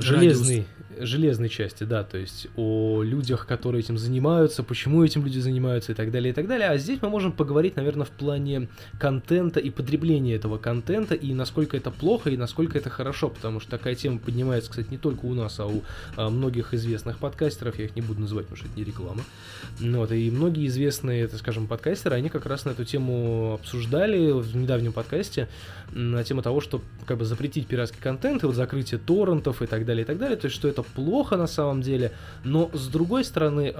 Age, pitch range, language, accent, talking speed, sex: 20-39, 115-145 Hz, Russian, native, 195 wpm, male